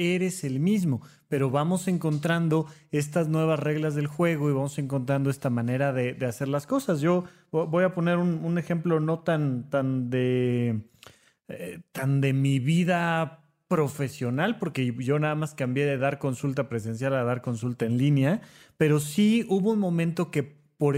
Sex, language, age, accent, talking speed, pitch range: male, Spanish, 30-49, Mexican, 160 wpm, 135-180 Hz